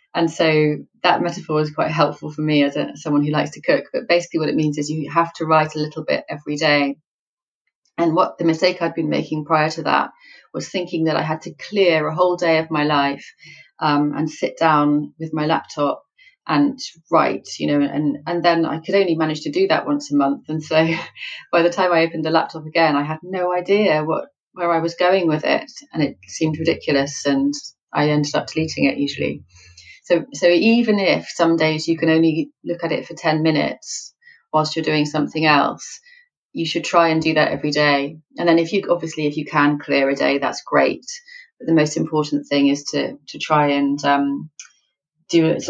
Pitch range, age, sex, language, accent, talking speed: 145-170 Hz, 30-49, female, English, British, 215 wpm